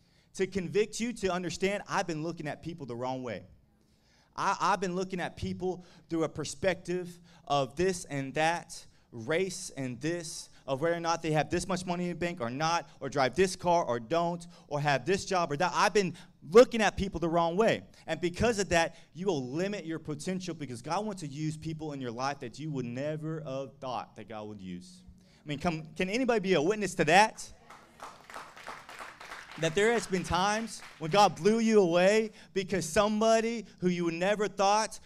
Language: English